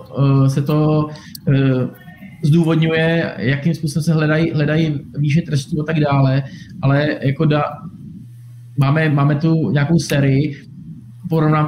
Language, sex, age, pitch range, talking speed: Czech, male, 20-39, 140-155 Hz, 120 wpm